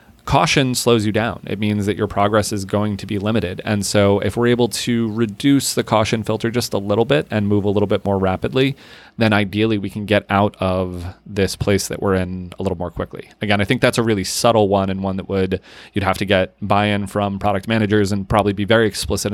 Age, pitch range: 30-49, 90-105 Hz